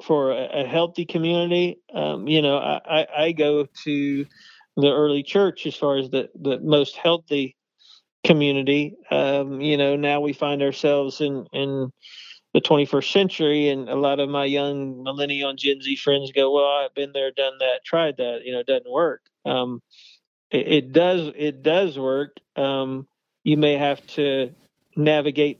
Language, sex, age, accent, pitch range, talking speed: English, male, 40-59, American, 140-160 Hz, 170 wpm